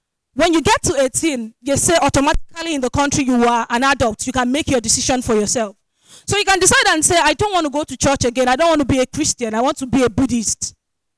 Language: English